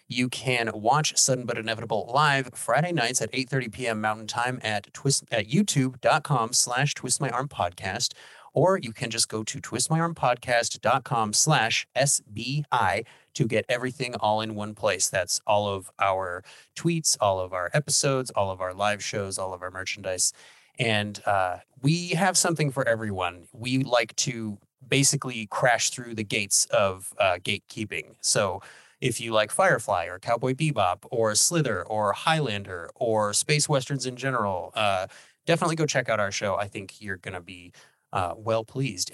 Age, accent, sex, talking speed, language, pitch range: 30-49, American, male, 165 wpm, English, 105-135 Hz